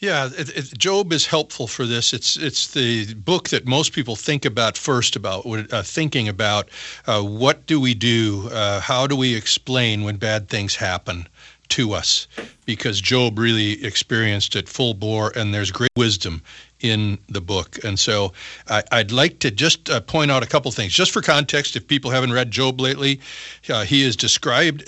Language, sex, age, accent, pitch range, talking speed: English, male, 40-59, American, 105-135 Hz, 185 wpm